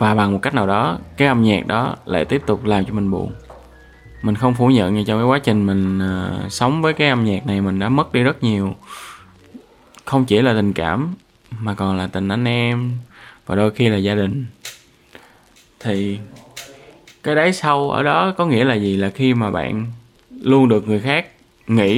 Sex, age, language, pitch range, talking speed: male, 20-39, Vietnamese, 105-135 Hz, 210 wpm